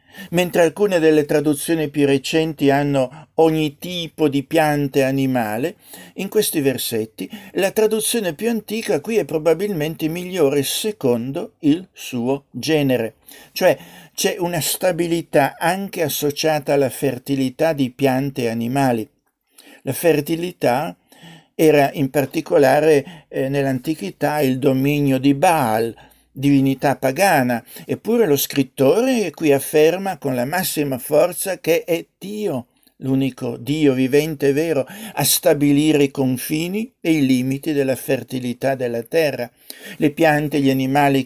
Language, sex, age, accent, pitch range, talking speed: Italian, male, 50-69, native, 135-165 Hz, 125 wpm